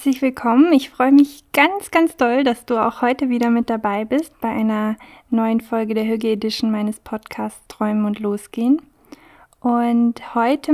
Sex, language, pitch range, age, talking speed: female, German, 220-250 Hz, 20-39, 170 wpm